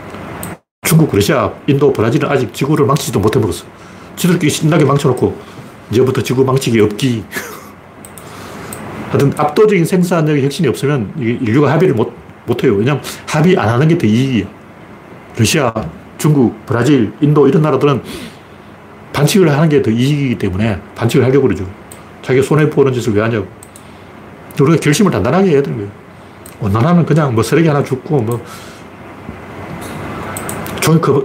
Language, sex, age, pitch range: Korean, male, 40-59, 110-155 Hz